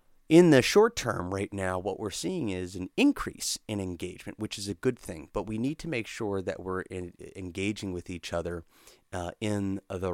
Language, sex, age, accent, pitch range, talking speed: English, male, 30-49, American, 90-105 Hz, 200 wpm